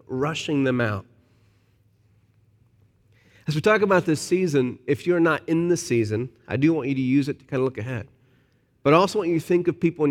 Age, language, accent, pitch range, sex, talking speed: 40-59, English, American, 115-155 Hz, male, 220 wpm